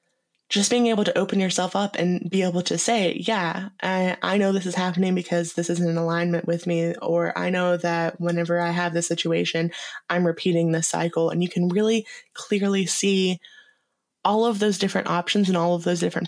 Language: English